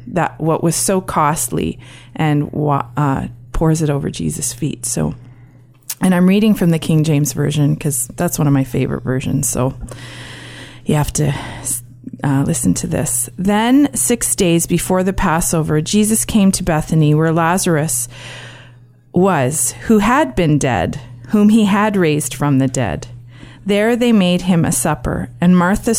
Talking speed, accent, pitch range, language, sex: 155 wpm, American, 140-185 Hz, English, female